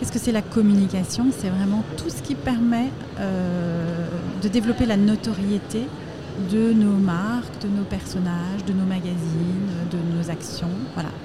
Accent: French